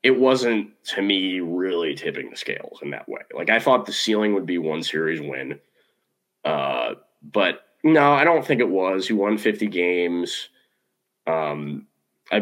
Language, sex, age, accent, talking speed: English, male, 20-39, American, 170 wpm